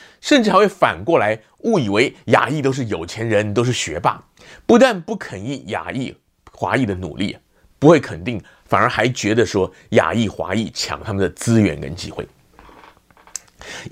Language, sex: Chinese, male